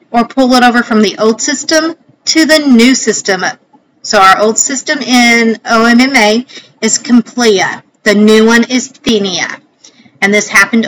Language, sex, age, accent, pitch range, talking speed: English, female, 40-59, American, 215-275 Hz, 155 wpm